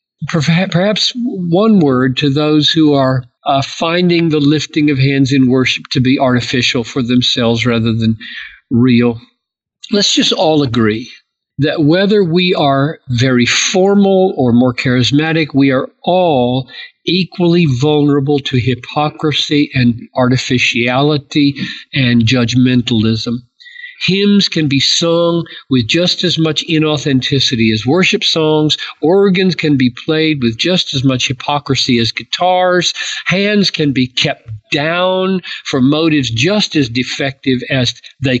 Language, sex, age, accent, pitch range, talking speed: English, male, 50-69, American, 130-180 Hz, 130 wpm